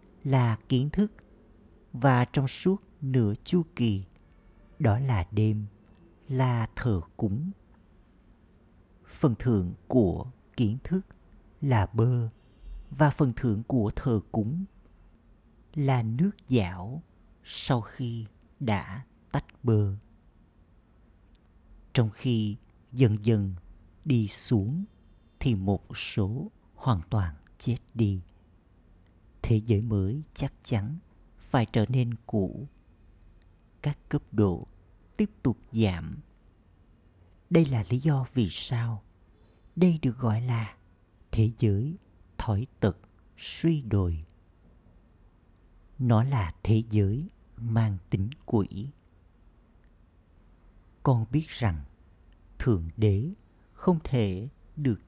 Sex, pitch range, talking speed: male, 90-125 Hz, 105 wpm